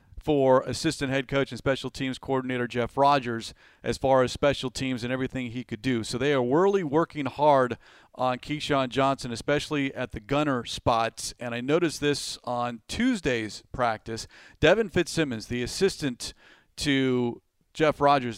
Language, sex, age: English, male, 40-59